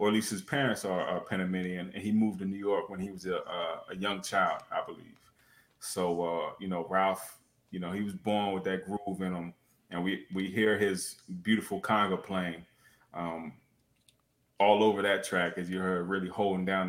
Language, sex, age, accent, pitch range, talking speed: English, male, 20-39, American, 95-110 Hz, 205 wpm